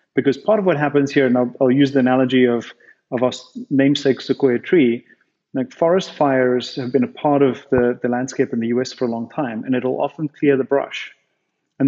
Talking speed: 215 wpm